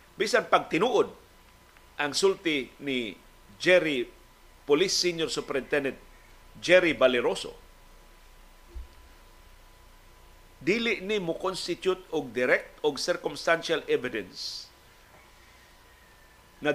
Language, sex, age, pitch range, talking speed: Filipino, male, 50-69, 130-170 Hz, 75 wpm